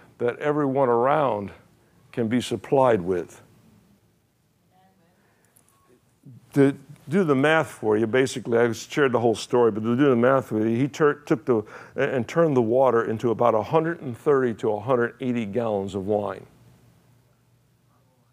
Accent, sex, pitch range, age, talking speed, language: American, male, 110-130 Hz, 60-79, 140 wpm, English